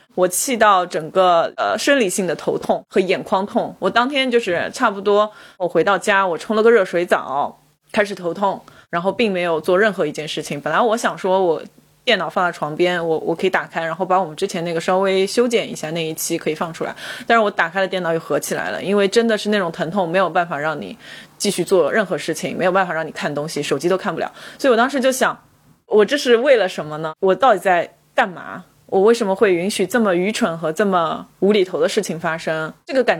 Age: 20-39